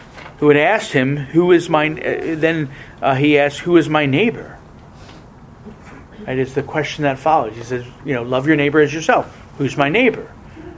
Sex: male